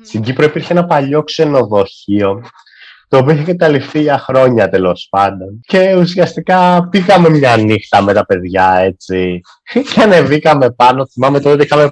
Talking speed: 150 wpm